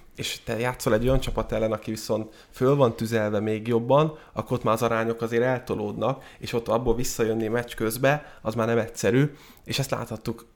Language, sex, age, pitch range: Hungarian, male, 20-39, 115-135 Hz